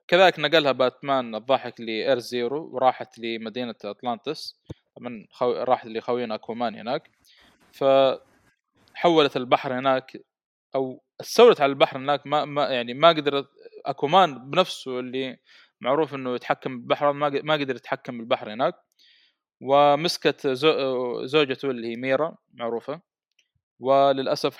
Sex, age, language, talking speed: male, 20-39, Arabic, 115 wpm